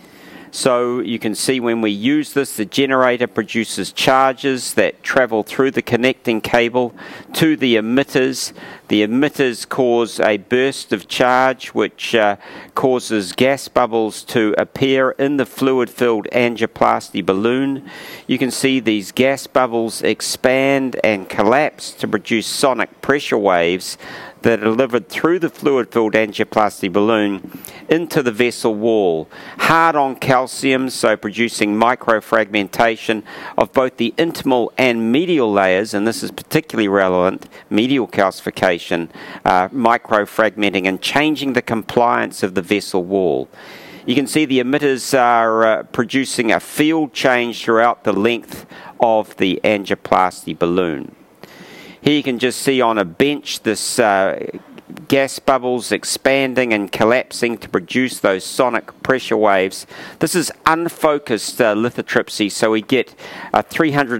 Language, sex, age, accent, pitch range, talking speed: English, male, 50-69, Australian, 110-135 Hz, 135 wpm